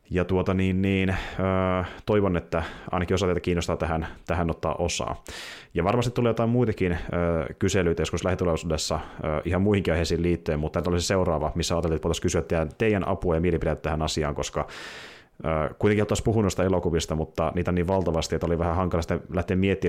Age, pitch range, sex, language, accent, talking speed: 30-49, 80-100 Hz, male, Finnish, native, 195 wpm